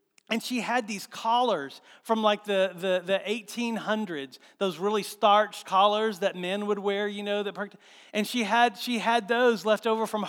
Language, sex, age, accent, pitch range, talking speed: English, male, 40-59, American, 165-230 Hz, 180 wpm